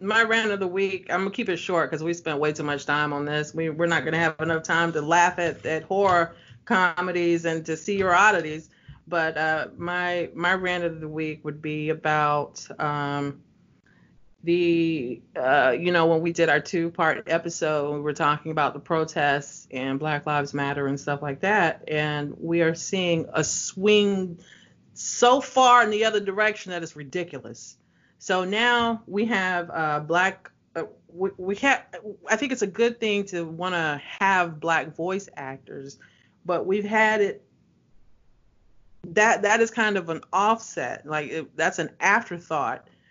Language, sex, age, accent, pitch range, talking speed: English, female, 40-59, American, 150-190 Hz, 180 wpm